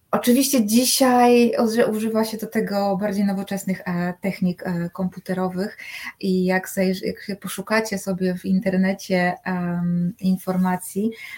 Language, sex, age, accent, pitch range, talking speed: Polish, female, 20-39, native, 180-215 Hz, 95 wpm